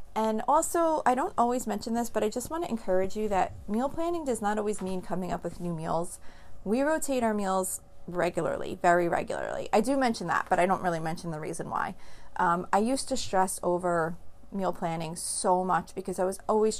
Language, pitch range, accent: English, 180-230 Hz, American